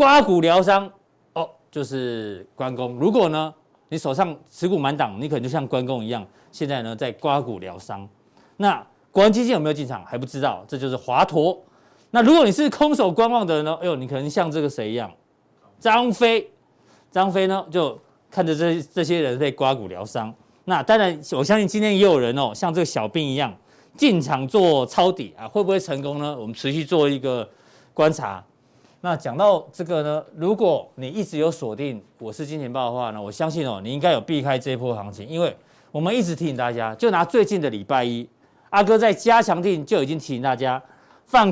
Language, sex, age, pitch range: Chinese, male, 40-59, 130-195 Hz